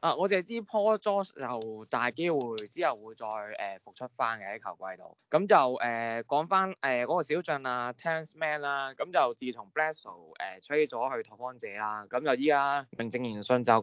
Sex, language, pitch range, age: male, Chinese, 110-145 Hz, 20-39